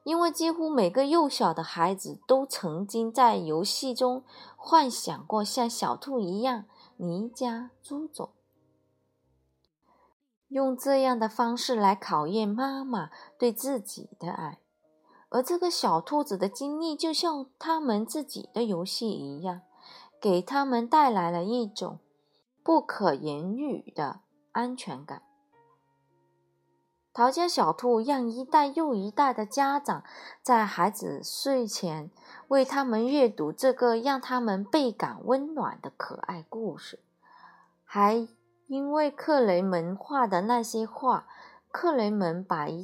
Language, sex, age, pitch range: Chinese, female, 20-39, 185-270 Hz